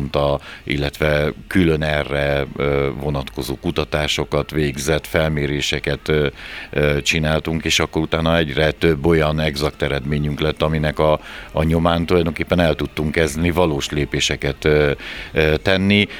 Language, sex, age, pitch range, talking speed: Hungarian, male, 50-69, 75-85 Hz, 105 wpm